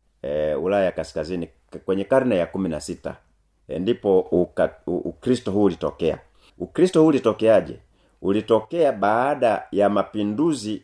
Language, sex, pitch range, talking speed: Swahili, male, 90-115 Hz, 105 wpm